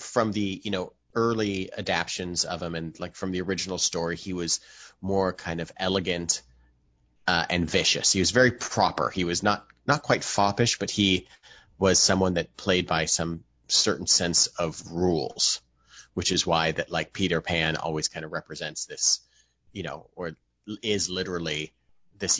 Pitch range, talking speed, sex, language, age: 85-105 Hz, 170 wpm, male, English, 30-49